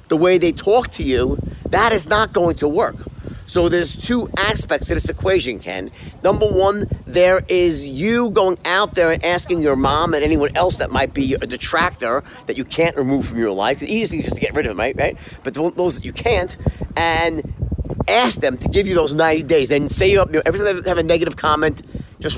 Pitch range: 155-200 Hz